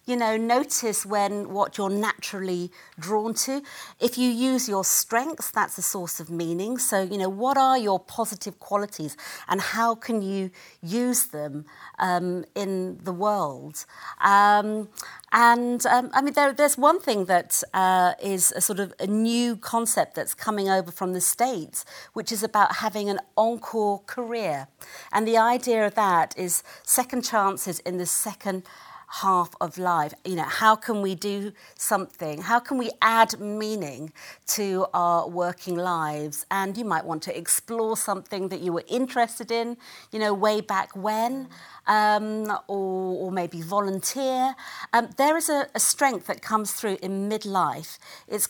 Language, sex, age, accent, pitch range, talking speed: English, female, 50-69, British, 185-230 Hz, 165 wpm